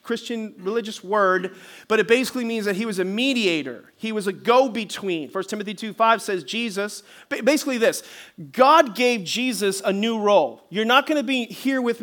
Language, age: English, 40-59